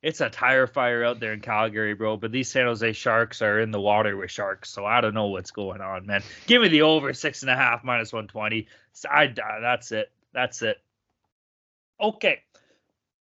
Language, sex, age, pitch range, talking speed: English, male, 20-39, 130-210 Hz, 205 wpm